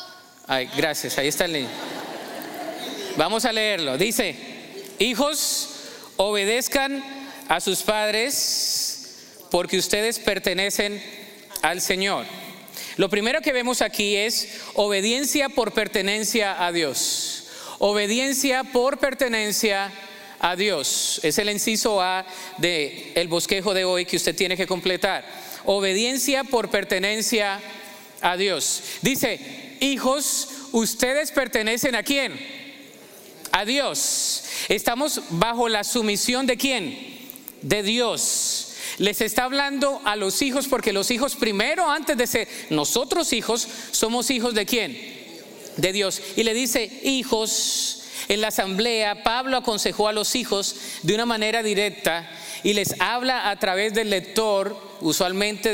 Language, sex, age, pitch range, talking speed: Spanish, male, 40-59, 195-255 Hz, 125 wpm